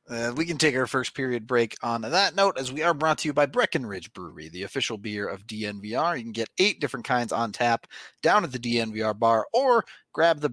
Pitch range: 110-160 Hz